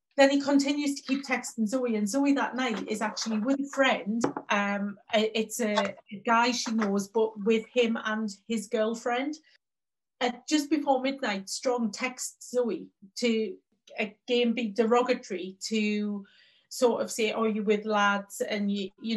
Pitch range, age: 210-250 Hz, 30-49